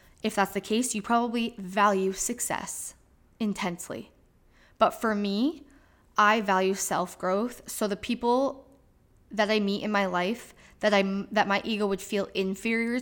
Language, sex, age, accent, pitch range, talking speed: English, female, 10-29, American, 195-225 Hz, 145 wpm